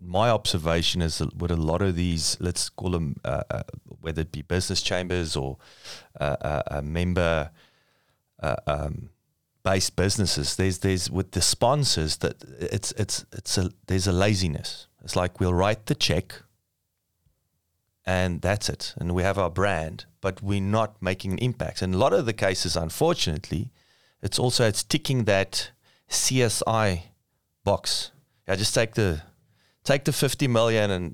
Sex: male